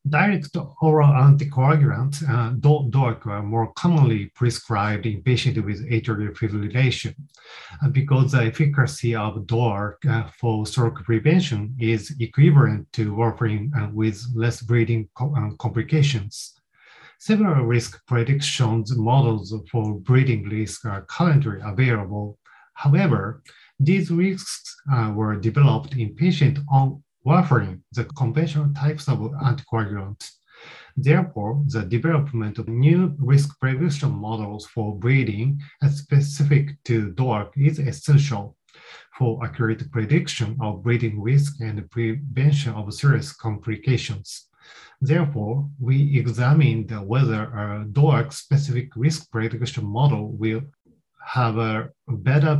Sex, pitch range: male, 110-145 Hz